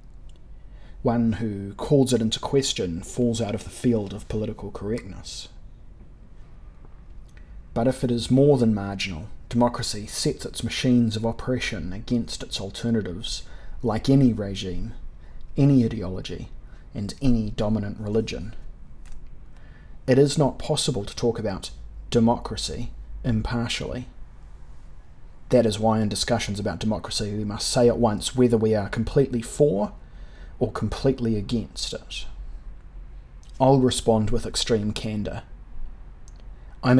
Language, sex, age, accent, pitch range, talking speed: English, male, 30-49, Australian, 100-120 Hz, 120 wpm